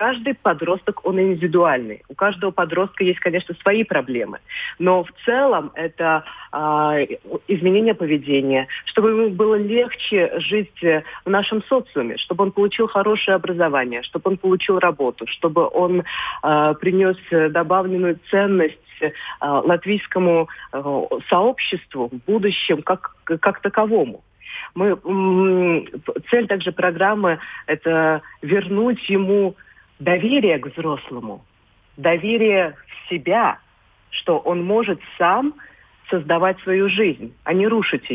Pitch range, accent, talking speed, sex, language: 155-195 Hz, native, 110 wpm, female, Russian